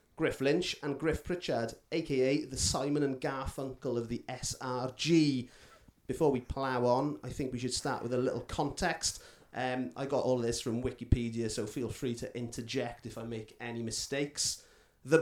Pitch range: 130-155 Hz